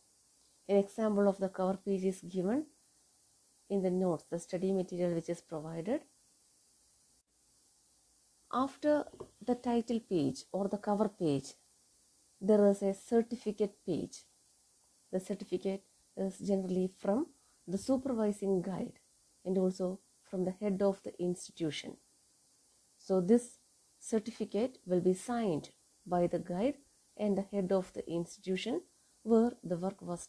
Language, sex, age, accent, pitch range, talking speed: English, female, 30-49, Indian, 185-230 Hz, 130 wpm